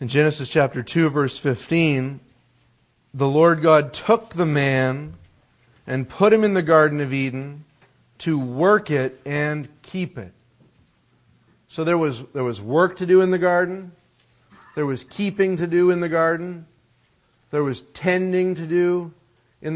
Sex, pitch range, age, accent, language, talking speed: male, 125-180 Hz, 40-59, American, English, 155 wpm